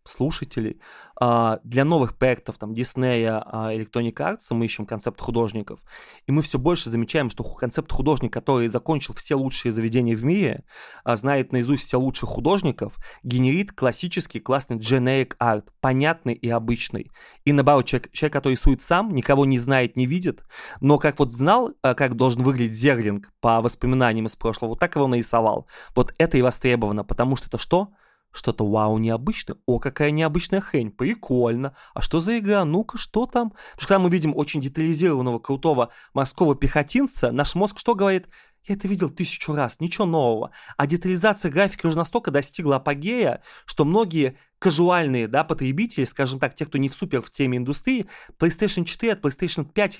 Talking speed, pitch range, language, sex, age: 165 wpm, 120-170 Hz, Russian, male, 20-39